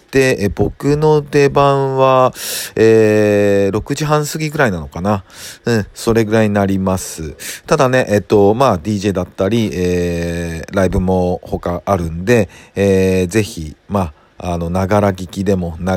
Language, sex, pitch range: Japanese, male, 90-115 Hz